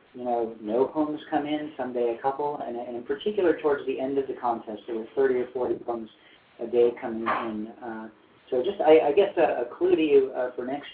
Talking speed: 240 wpm